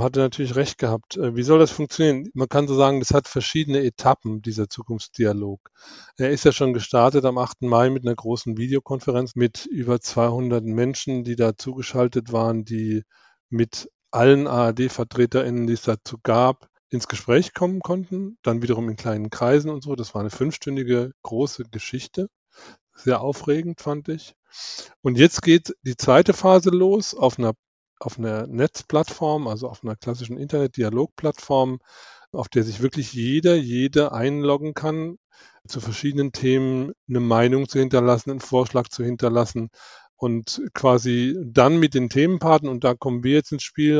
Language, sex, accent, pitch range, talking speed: German, male, German, 120-145 Hz, 160 wpm